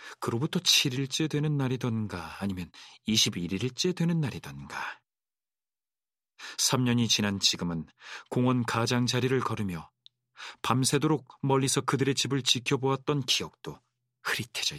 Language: Korean